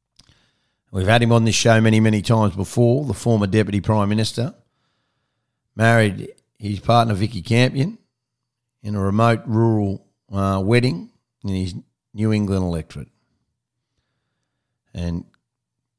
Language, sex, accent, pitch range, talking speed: English, male, Australian, 95-120 Hz, 120 wpm